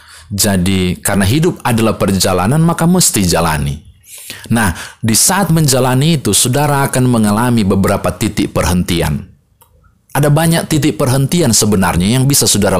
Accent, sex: native, male